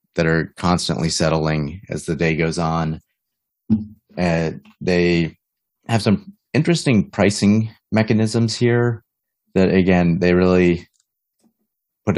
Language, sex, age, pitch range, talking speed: English, male, 30-49, 85-100 Hz, 110 wpm